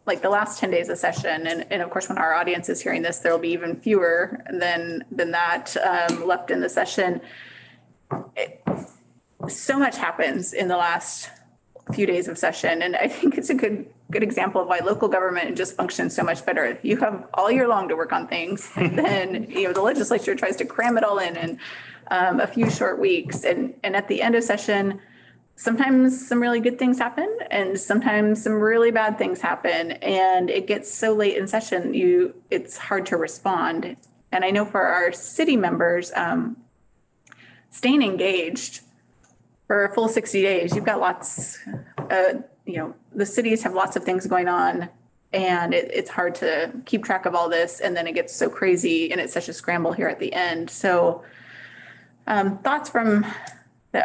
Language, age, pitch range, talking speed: English, 20-39, 175-245 Hz, 190 wpm